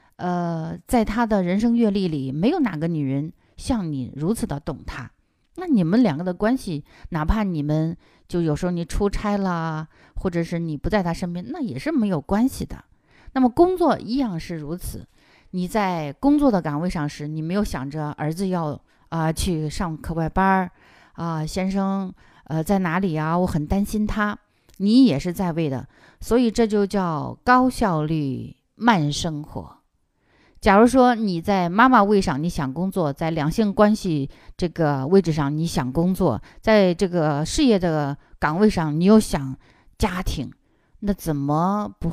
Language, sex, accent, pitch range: Chinese, female, native, 155-200 Hz